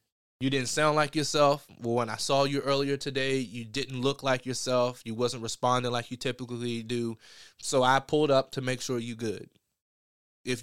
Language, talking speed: English, 190 wpm